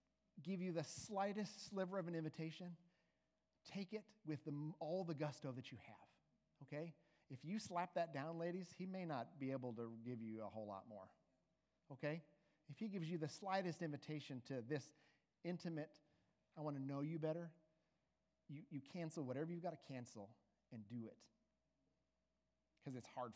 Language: English